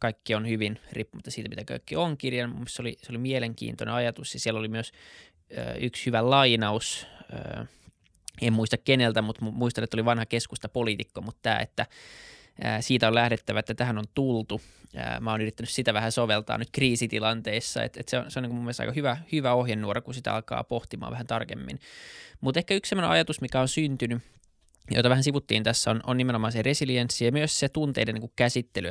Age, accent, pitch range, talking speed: 20-39, native, 110-130 Hz, 190 wpm